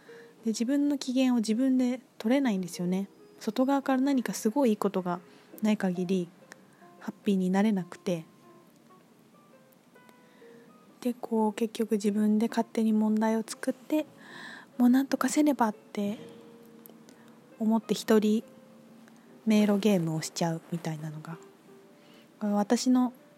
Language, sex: Japanese, female